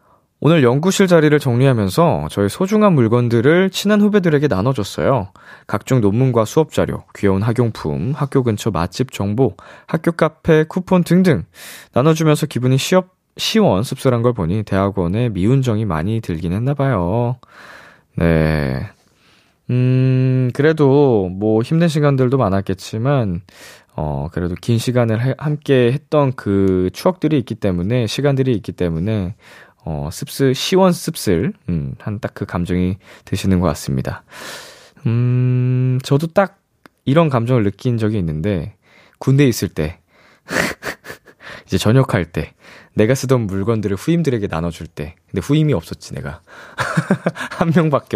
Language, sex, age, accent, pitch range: Korean, male, 20-39, native, 100-150 Hz